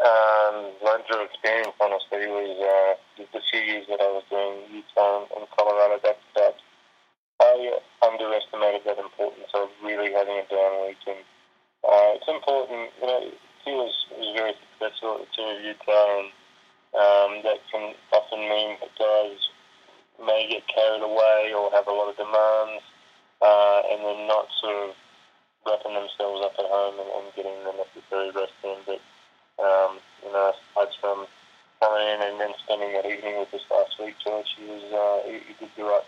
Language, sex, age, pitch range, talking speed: English, male, 20-39, 100-105 Hz, 175 wpm